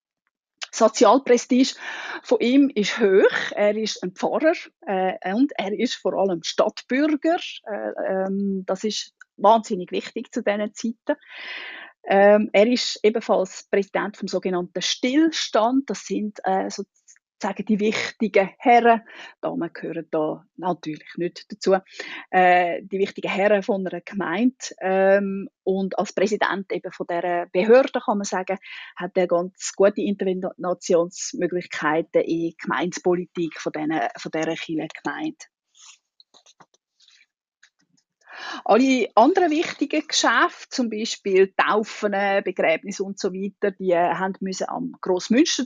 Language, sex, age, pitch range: German, female, 30-49, 185-250 Hz